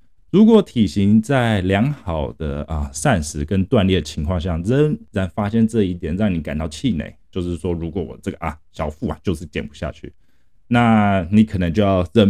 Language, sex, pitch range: Chinese, male, 80-110 Hz